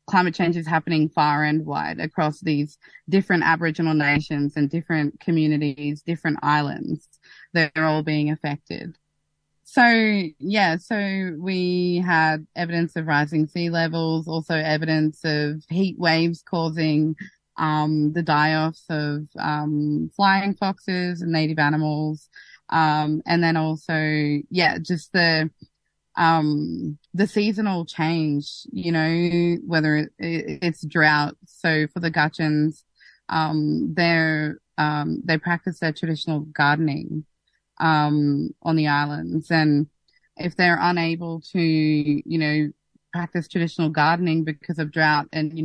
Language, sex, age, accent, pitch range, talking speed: English, female, 20-39, Australian, 150-170 Hz, 125 wpm